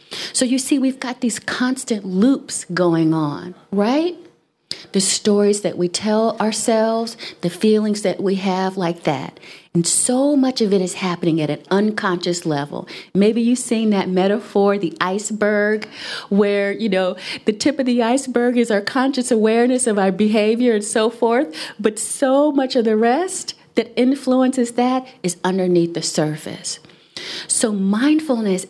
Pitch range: 185-245 Hz